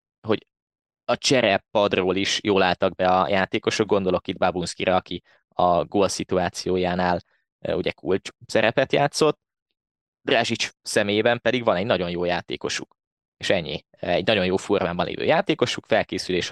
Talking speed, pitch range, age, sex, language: 140 wpm, 95-115 Hz, 20-39, male, Hungarian